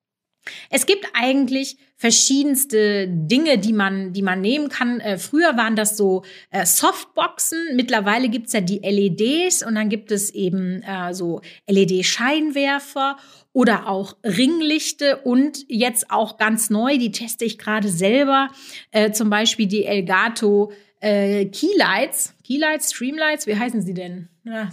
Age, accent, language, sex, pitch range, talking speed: 30-49, German, German, female, 200-255 Hz, 145 wpm